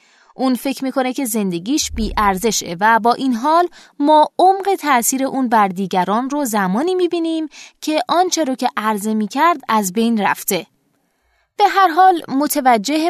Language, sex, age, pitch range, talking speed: Persian, female, 20-39, 205-295 Hz, 145 wpm